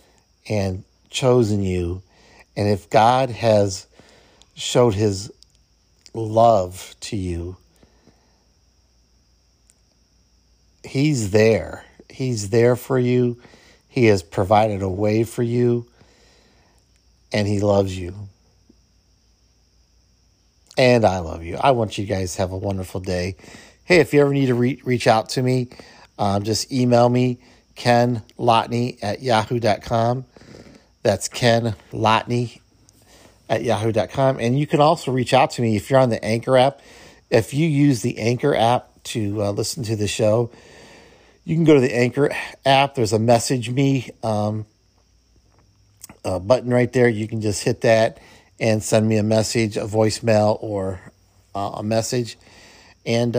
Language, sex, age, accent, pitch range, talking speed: English, male, 50-69, American, 100-125 Hz, 140 wpm